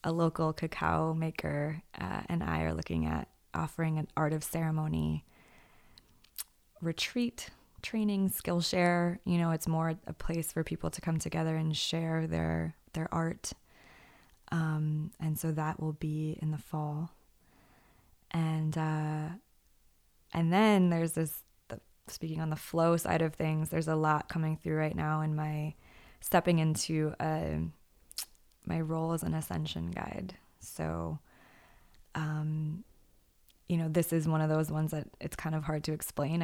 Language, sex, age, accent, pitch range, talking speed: English, female, 20-39, American, 150-165 Hz, 150 wpm